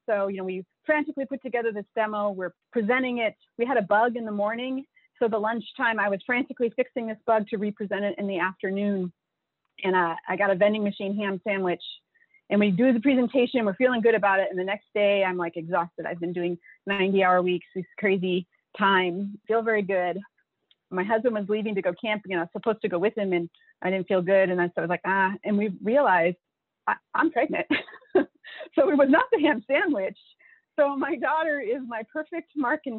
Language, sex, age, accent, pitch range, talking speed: English, female, 30-49, American, 195-250 Hz, 215 wpm